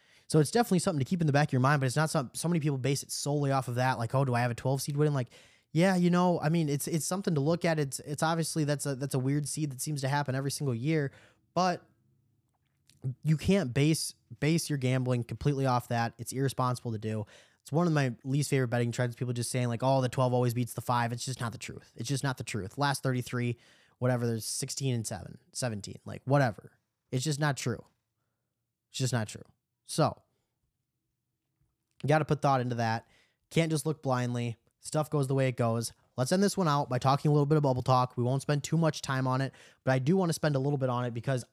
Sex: male